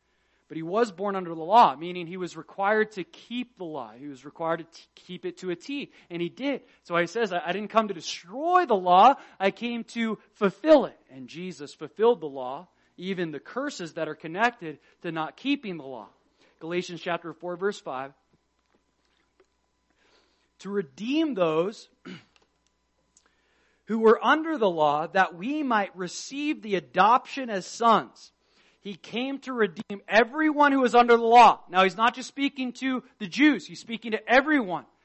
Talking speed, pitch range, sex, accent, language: 175 wpm, 175-235 Hz, male, American, English